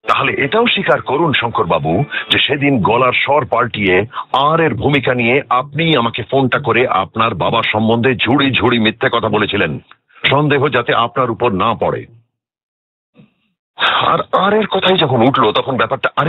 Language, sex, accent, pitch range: Bengali, male, native, 100-140 Hz